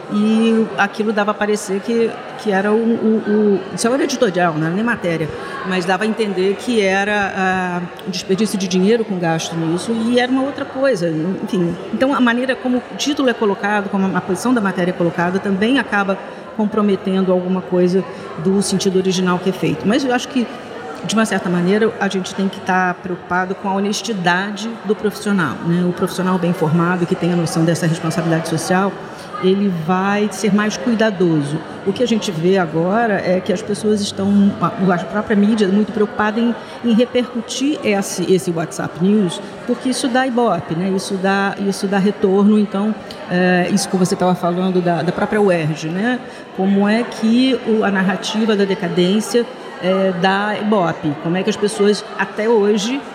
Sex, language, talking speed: female, Portuguese, 185 wpm